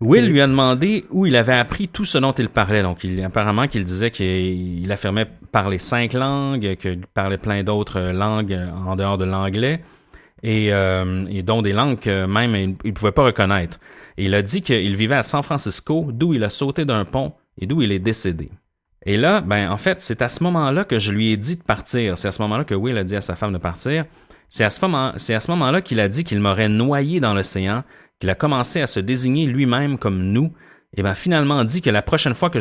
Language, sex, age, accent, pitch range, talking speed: French, male, 30-49, Canadian, 100-140 Hz, 230 wpm